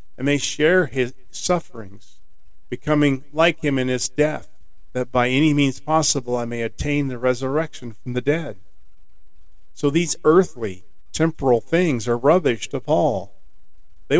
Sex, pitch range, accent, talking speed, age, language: male, 105-140 Hz, American, 145 wpm, 50-69, English